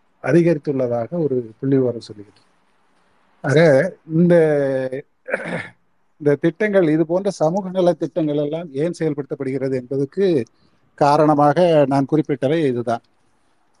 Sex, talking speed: male, 85 wpm